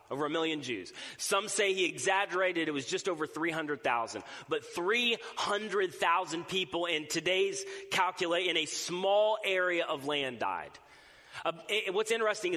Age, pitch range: 30-49, 170-215 Hz